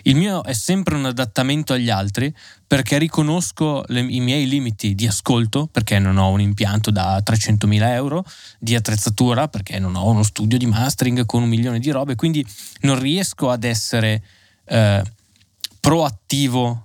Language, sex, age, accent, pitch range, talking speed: Italian, male, 10-29, native, 105-130 Hz, 160 wpm